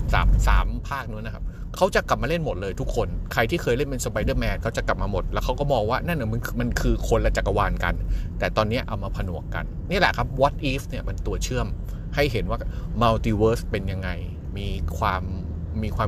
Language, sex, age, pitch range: Thai, male, 20-39, 95-130 Hz